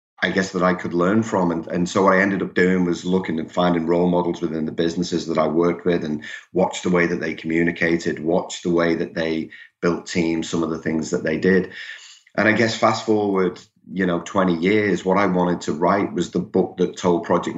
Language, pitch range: English, 85-100 Hz